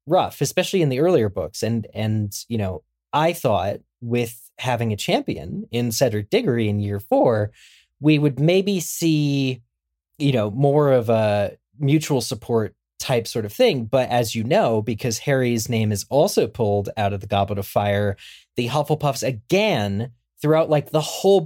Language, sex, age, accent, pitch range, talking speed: English, male, 20-39, American, 105-140 Hz, 170 wpm